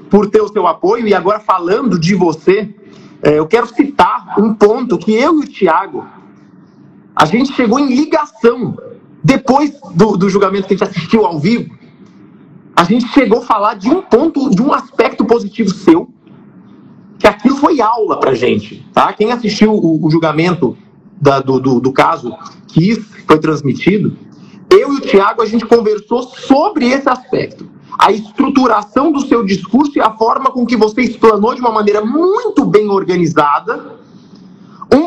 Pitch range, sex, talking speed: 185-245 Hz, male, 170 wpm